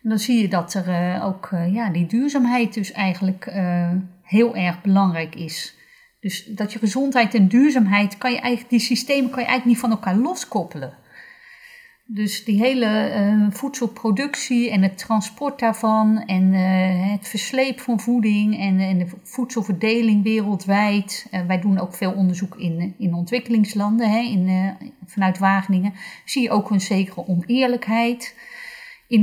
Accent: Dutch